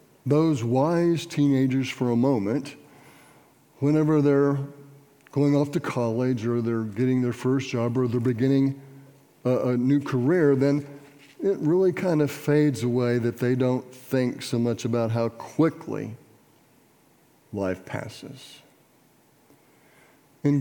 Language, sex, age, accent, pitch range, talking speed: English, male, 60-79, American, 125-145 Hz, 130 wpm